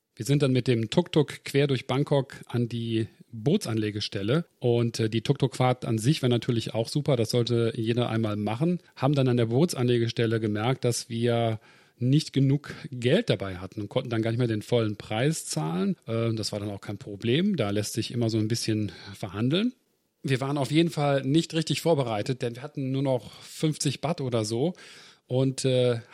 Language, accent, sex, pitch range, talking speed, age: German, German, male, 120-145 Hz, 190 wpm, 40-59